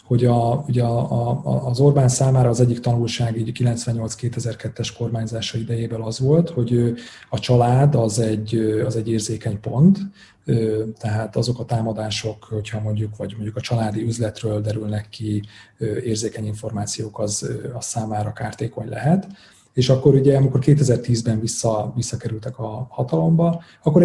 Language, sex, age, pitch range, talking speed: Hungarian, male, 30-49, 110-125 Hz, 140 wpm